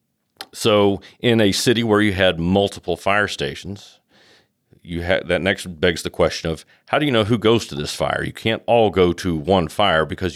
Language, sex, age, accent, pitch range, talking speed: English, male, 40-59, American, 85-105 Hz, 205 wpm